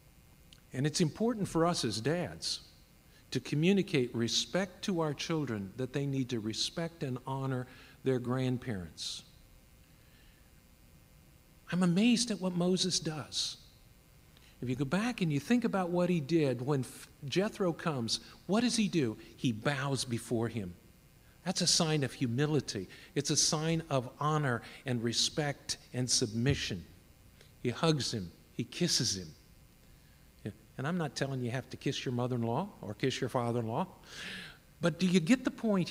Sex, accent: male, American